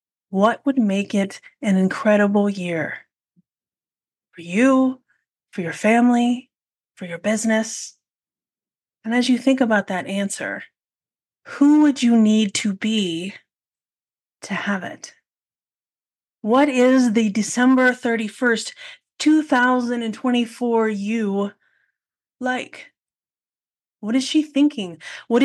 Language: English